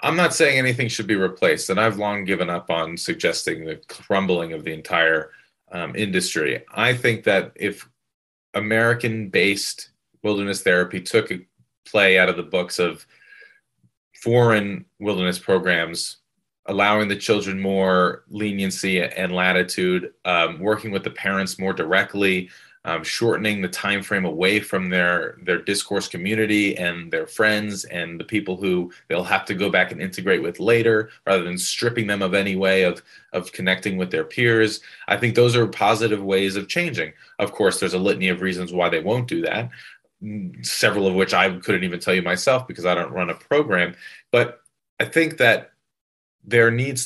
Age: 30-49